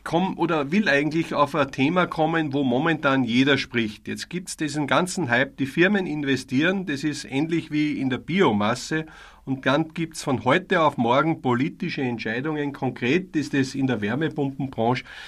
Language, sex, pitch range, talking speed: German, male, 135-175 Hz, 170 wpm